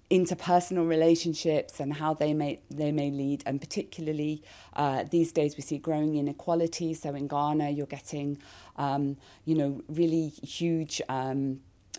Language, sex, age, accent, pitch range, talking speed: Danish, female, 40-59, British, 140-165 Hz, 150 wpm